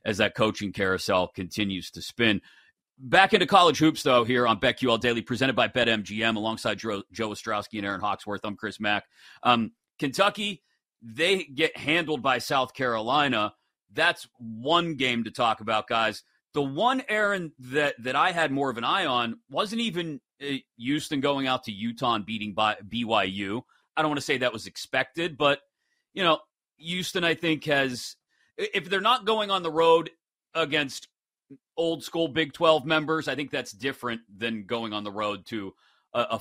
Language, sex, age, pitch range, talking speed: English, male, 40-59, 115-155 Hz, 175 wpm